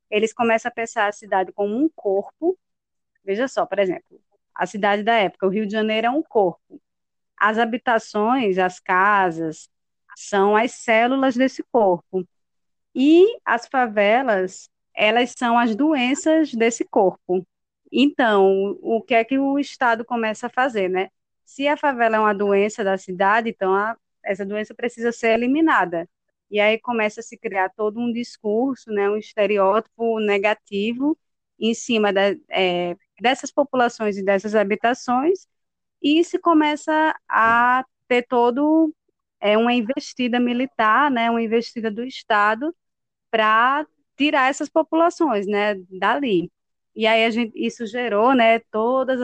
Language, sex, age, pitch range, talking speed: Portuguese, female, 20-39, 200-255 Hz, 140 wpm